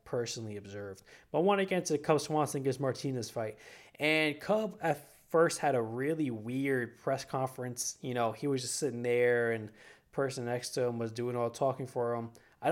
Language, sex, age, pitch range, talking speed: English, male, 20-39, 120-150 Hz, 200 wpm